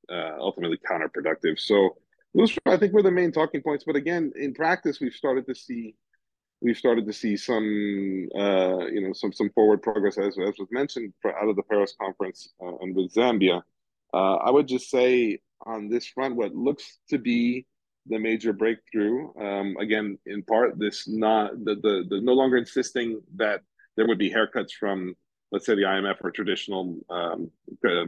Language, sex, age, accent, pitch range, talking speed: English, male, 40-59, American, 100-130 Hz, 185 wpm